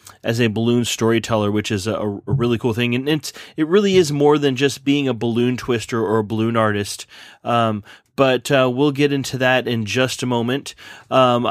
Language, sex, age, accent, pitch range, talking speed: English, male, 30-49, American, 115-130 Hz, 205 wpm